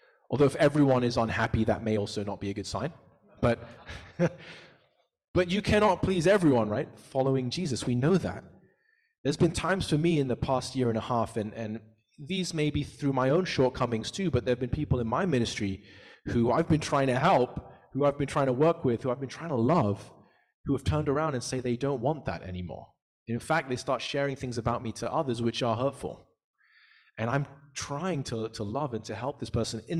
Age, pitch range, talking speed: 20-39, 110-140 Hz, 220 wpm